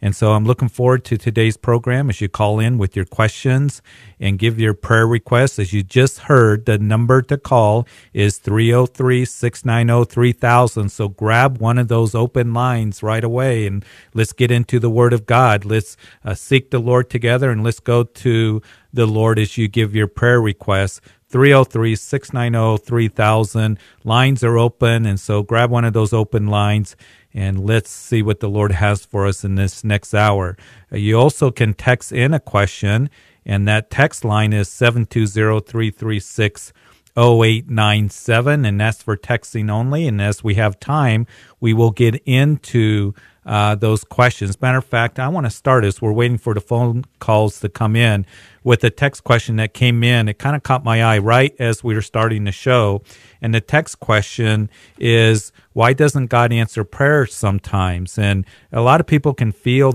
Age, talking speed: 40-59, 175 wpm